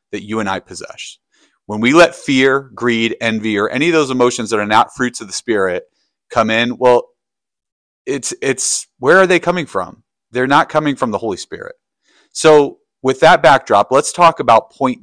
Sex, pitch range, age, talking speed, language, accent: male, 110-155 Hz, 30-49, 190 wpm, English, American